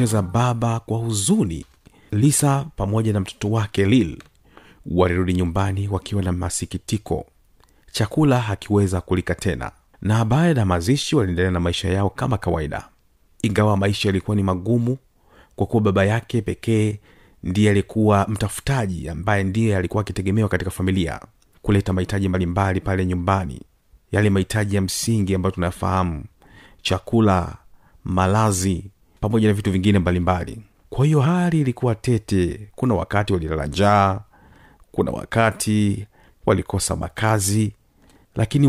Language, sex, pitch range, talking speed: Swahili, male, 95-115 Hz, 125 wpm